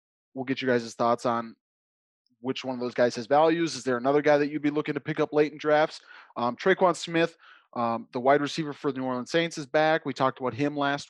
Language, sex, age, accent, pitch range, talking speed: English, male, 20-39, American, 125-155 Hz, 250 wpm